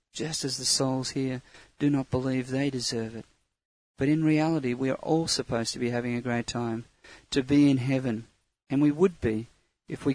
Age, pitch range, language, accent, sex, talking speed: 40-59, 120-145 Hz, English, Australian, male, 200 wpm